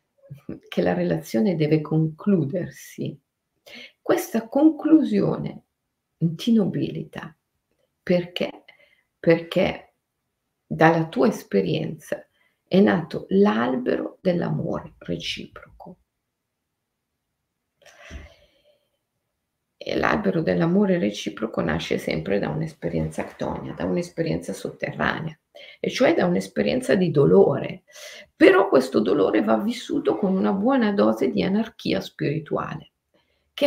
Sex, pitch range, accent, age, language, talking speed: female, 160-230 Hz, native, 50-69, Italian, 90 wpm